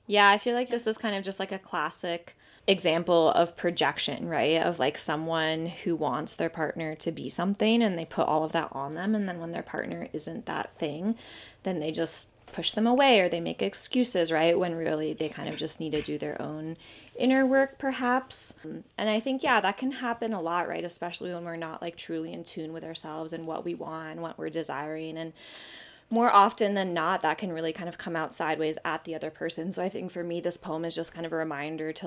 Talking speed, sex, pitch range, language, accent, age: 235 wpm, female, 160-190 Hz, English, American, 20-39